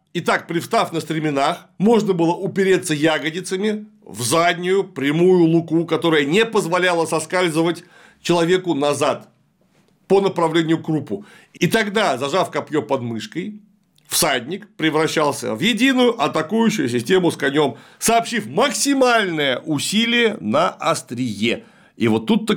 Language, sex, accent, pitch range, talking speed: Russian, male, native, 155-200 Hz, 115 wpm